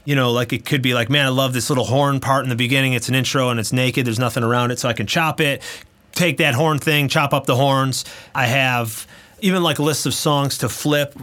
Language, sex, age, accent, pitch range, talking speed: English, male, 30-49, American, 120-150 Hz, 260 wpm